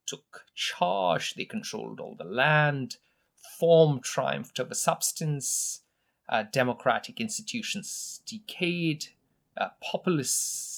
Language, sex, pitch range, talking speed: English, male, 130-190 Hz, 95 wpm